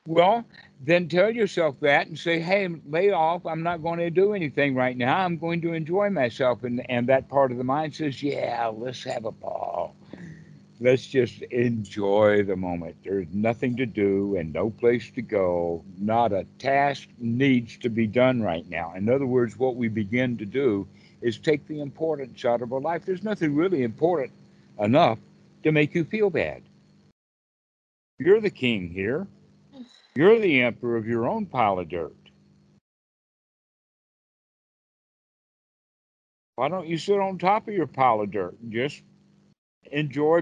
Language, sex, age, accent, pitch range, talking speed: English, male, 60-79, American, 120-175 Hz, 165 wpm